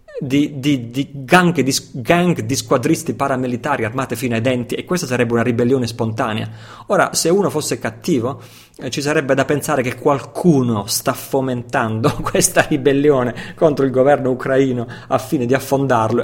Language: Italian